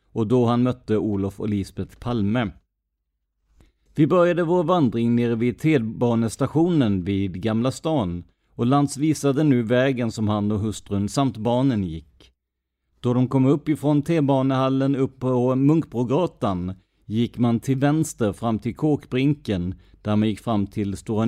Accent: native